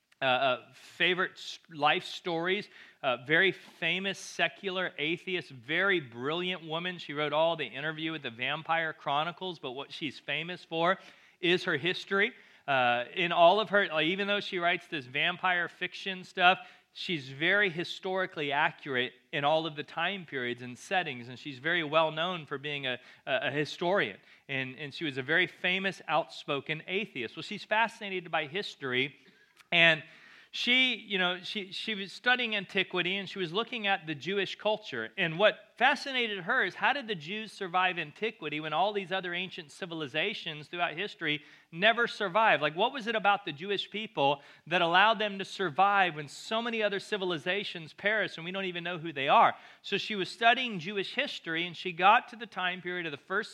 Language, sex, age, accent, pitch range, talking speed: English, male, 40-59, American, 160-200 Hz, 180 wpm